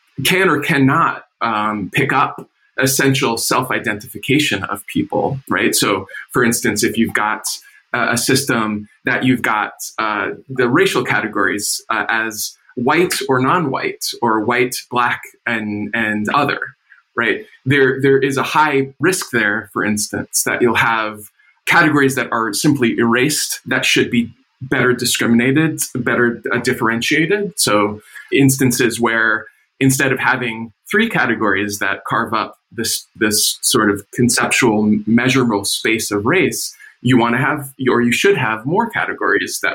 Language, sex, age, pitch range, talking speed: English, male, 20-39, 110-140 Hz, 145 wpm